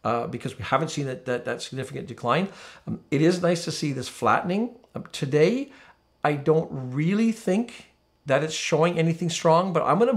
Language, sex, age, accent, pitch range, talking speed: English, male, 50-69, American, 130-165 Hz, 195 wpm